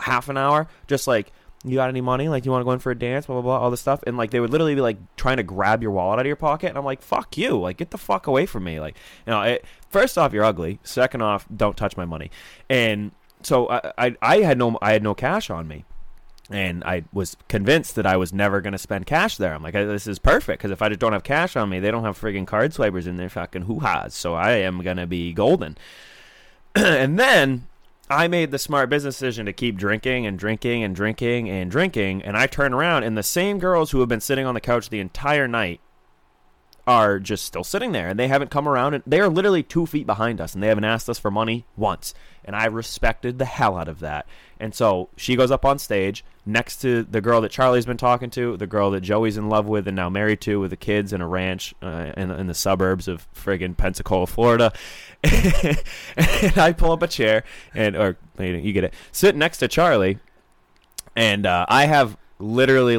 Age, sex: 20-39, male